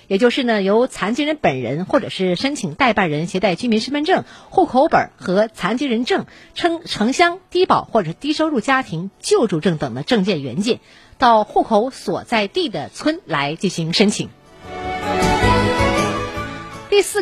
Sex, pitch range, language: female, 190-300 Hz, Chinese